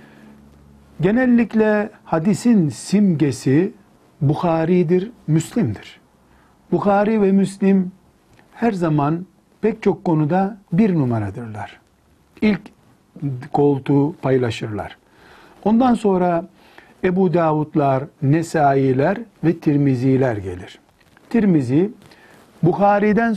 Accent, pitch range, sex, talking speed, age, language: native, 145-195 Hz, male, 70 wpm, 60-79, Turkish